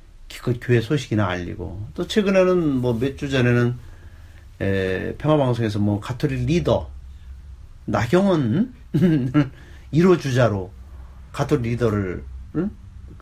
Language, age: Korean, 40-59